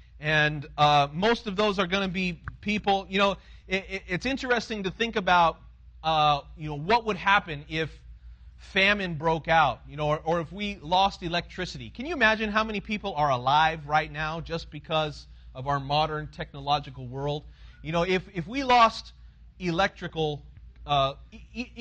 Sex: male